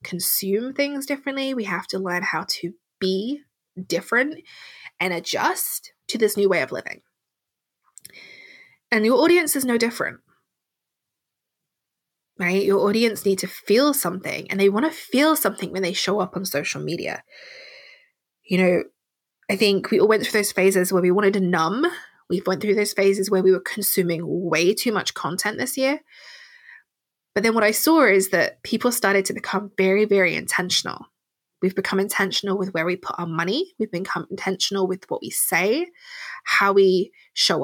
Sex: female